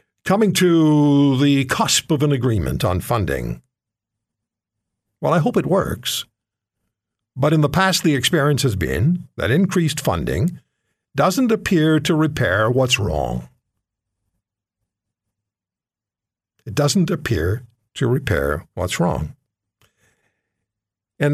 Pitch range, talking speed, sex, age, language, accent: 100-140 Hz, 110 wpm, male, 60-79, English, American